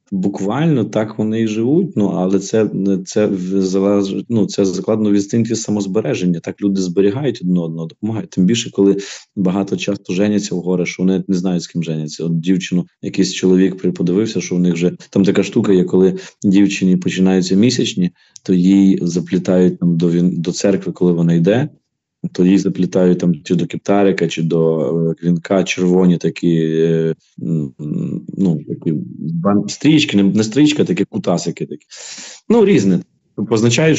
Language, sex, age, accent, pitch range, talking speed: Ukrainian, male, 20-39, native, 90-100 Hz, 150 wpm